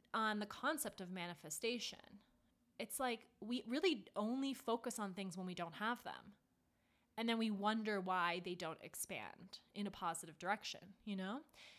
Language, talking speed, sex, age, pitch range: English, 165 wpm, female, 20-39, 190-235 Hz